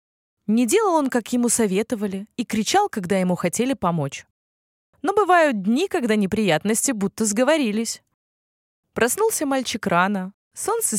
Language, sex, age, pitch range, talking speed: Russian, female, 20-39, 185-270 Hz, 125 wpm